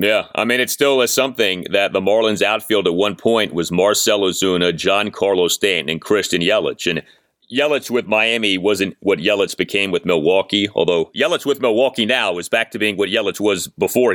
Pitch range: 95-120 Hz